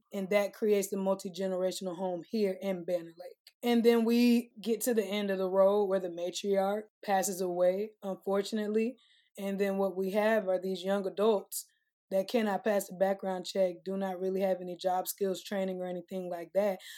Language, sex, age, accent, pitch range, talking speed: English, female, 20-39, American, 190-220 Hz, 185 wpm